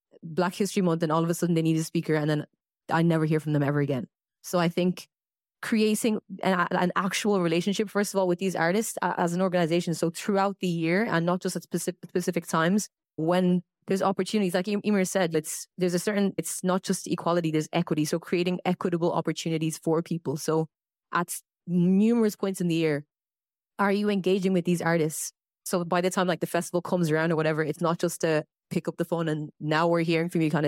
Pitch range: 165-190 Hz